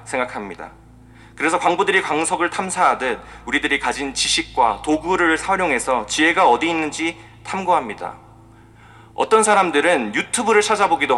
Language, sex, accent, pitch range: Korean, male, native, 115-180 Hz